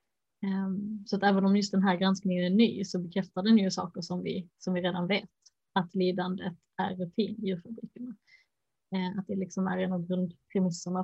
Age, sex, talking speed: 20-39, female, 185 wpm